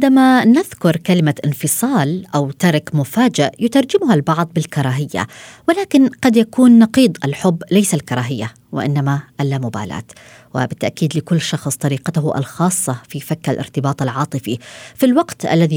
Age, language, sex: 20-39, Arabic, female